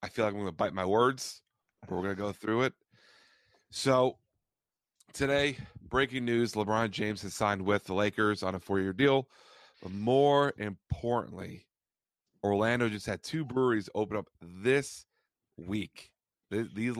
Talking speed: 155 wpm